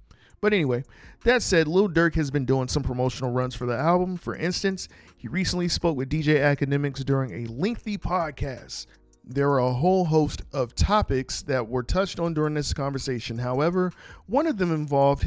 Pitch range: 125-160 Hz